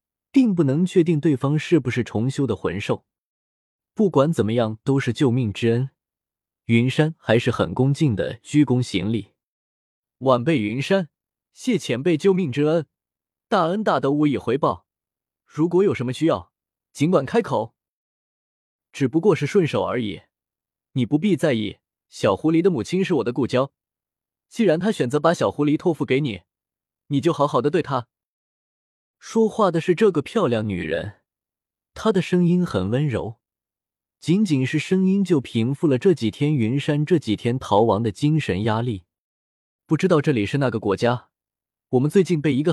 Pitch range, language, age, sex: 115-165 Hz, Chinese, 20-39, male